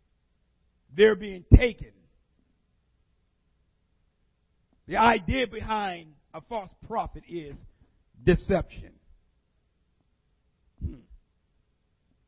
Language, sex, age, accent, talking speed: English, male, 50-69, American, 60 wpm